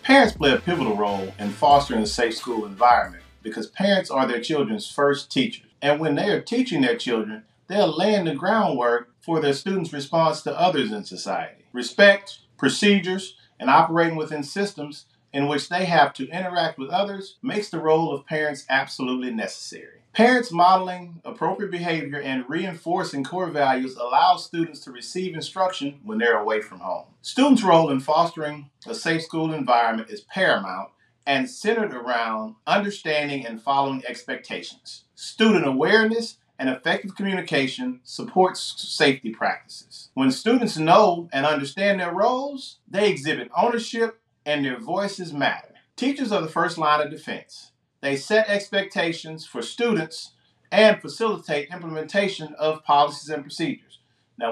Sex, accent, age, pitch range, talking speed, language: male, American, 40-59, 140-195 Hz, 150 wpm, English